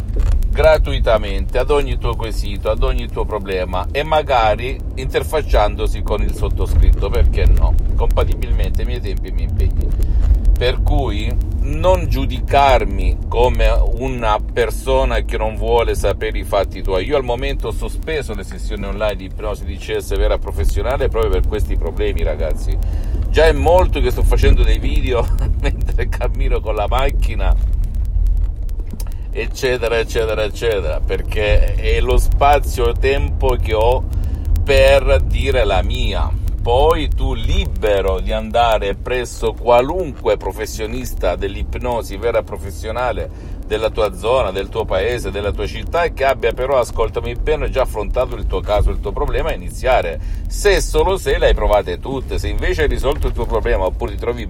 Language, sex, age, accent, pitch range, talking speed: Italian, male, 50-69, native, 80-110 Hz, 150 wpm